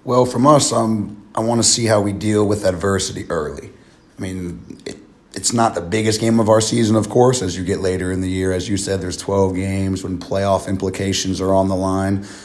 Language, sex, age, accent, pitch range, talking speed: English, male, 30-49, American, 95-105 Hz, 225 wpm